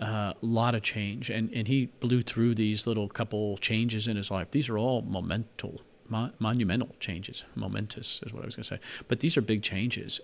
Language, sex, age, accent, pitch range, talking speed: English, male, 40-59, American, 100-120 Hz, 215 wpm